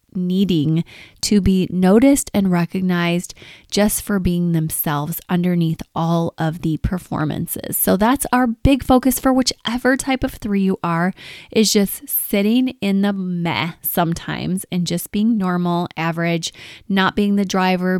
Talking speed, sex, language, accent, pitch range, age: 145 wpm, female, English, American, 175-225 Hz, 20-39